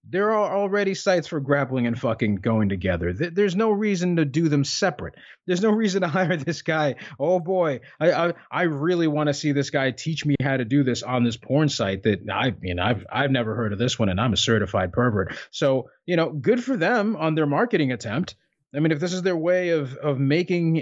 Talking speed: 235 wpm